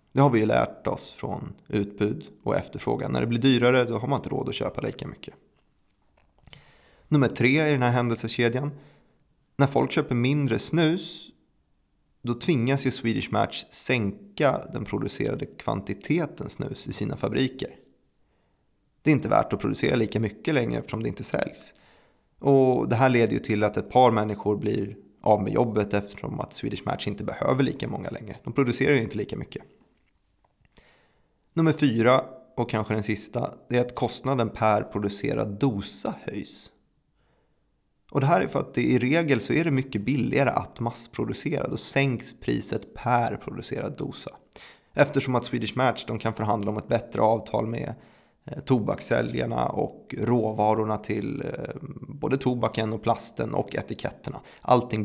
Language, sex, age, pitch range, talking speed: Swedish, male, 20-39, 110-135 Hz, 160 wpm